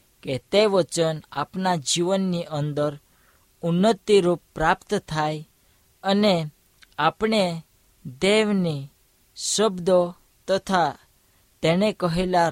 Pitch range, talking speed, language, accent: 150-190 Hz, 65 wpm, Hindi, native